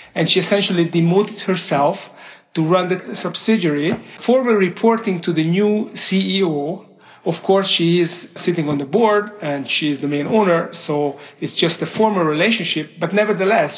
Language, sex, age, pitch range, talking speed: English, male, 40-59, 160-200 Hz, 160 wpm